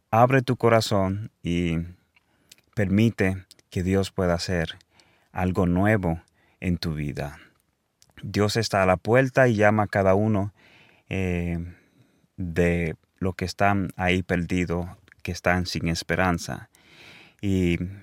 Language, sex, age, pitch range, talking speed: Swedish, male, 30-49, 90-110 Hz, 120 wpm